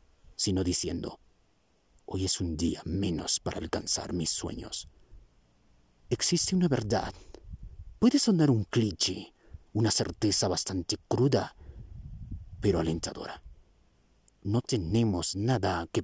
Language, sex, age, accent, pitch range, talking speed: Spanish, male, 50-69, Mexican, 65-105 Hz, 105 wpm